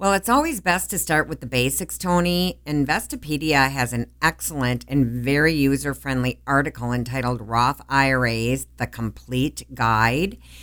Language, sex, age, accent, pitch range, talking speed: English, female, 50-69, American, 125-155 Hz, 135 wpm